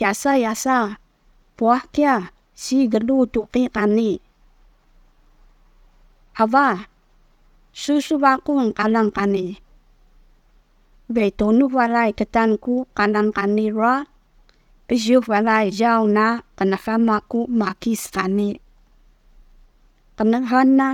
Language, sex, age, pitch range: Chinese, female, 20-39, 205-265 Hz